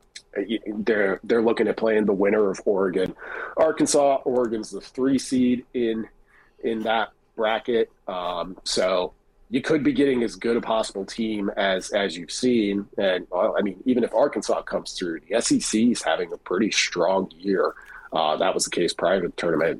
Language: English